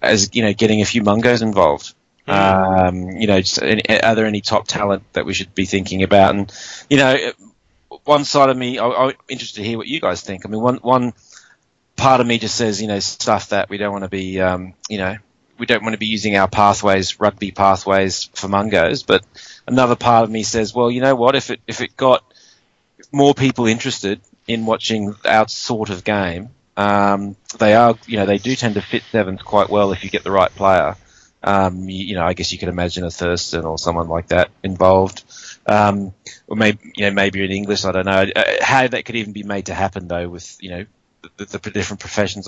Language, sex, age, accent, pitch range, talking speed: English, male, 30-49, Australian, 95-115 Hz, 225 wpm